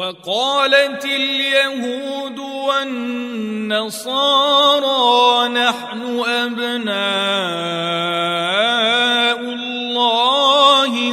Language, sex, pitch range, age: Arabic, male, 205-270 Hz, 40-59